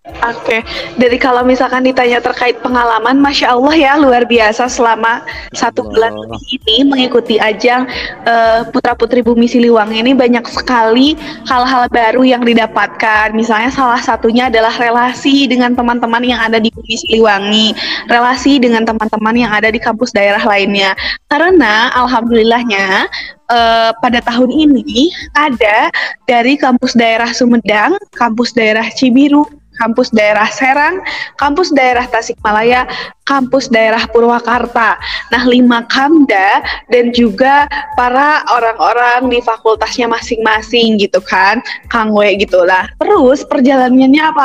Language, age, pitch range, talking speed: Indonesian, 20-39, 230-275 Hz, 125 wpm